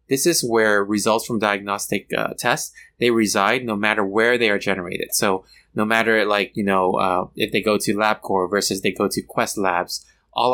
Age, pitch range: 20-39, 100-125 Hz